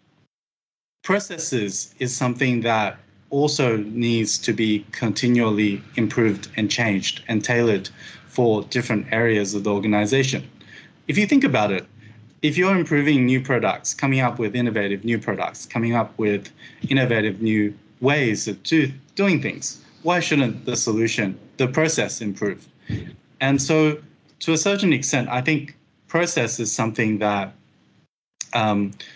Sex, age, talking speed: male, 20-39, 135 wpm